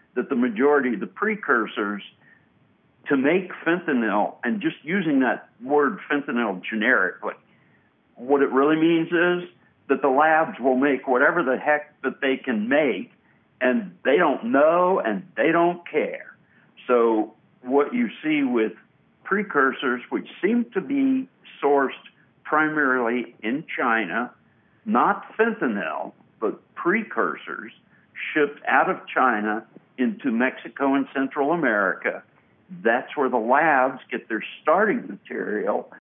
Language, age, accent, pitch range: English, 60-79, American, 120-170 Hz